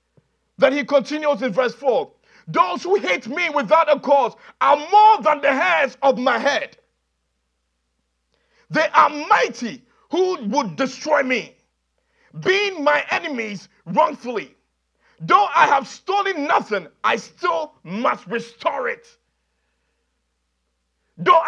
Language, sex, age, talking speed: English, male, 50-69, 120 wpm